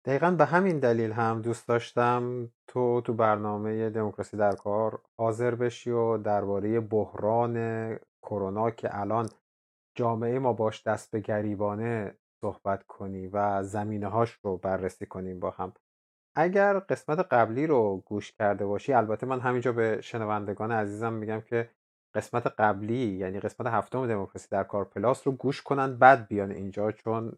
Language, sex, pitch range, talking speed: Persian, male, 105-125 Hz, 150 wpm